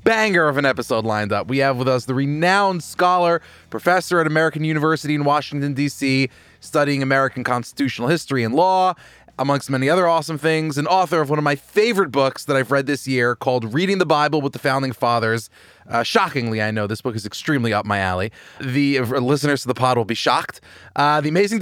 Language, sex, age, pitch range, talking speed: English, male, 20-39, 125-165 Hz, 210 wpm